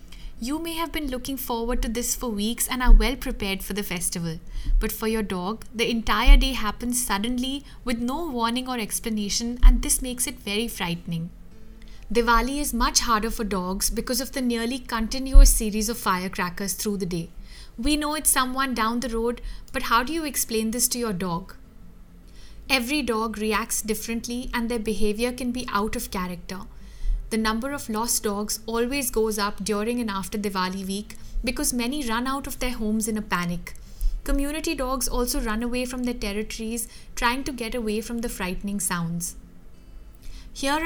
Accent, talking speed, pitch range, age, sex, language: Indian, 180 wpm, 205-255 Hz, 50-69, female, English